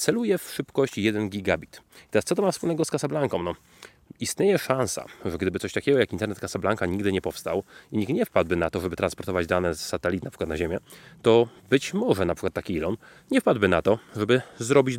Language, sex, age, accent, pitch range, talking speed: Polish, male, 30-49, native, 95-130 Hz, 210 wpm